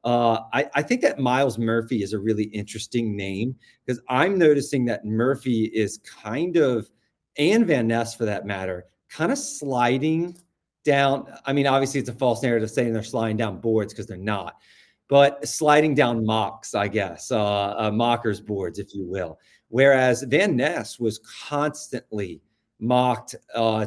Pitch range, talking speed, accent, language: 110-135 Hz, 165 wpm, American, English